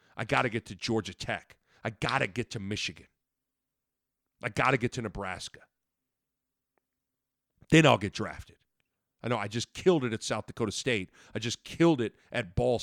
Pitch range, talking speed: 110-155 Hz, 185 wpm